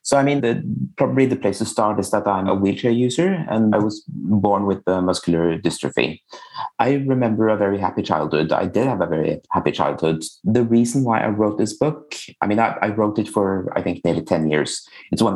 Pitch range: 90-110 Hz